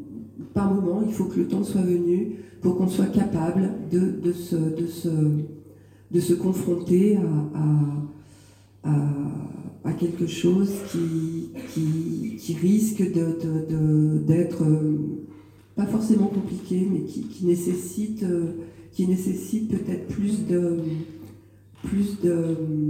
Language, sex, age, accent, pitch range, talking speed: French, female, 40-59, French, 155-195 Hz, 95 wpm